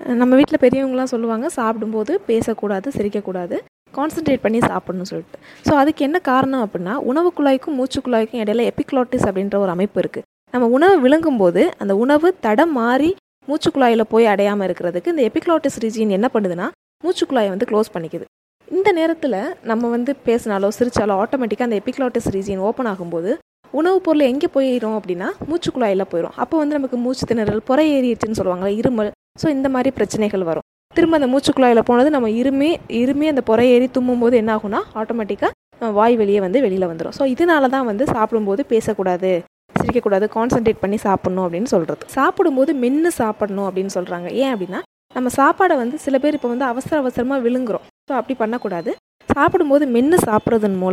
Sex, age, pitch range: female, 20-39, 210-275 Hz